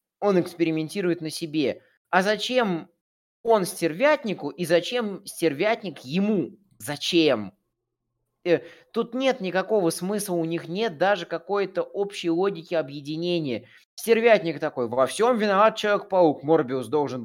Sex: male